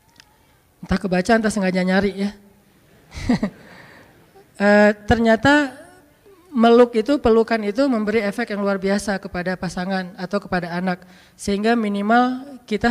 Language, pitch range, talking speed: Indonesian, 200-240 Hz, 115 wpm